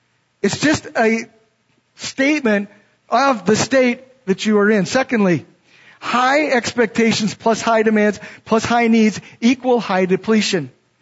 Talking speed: 125 wpm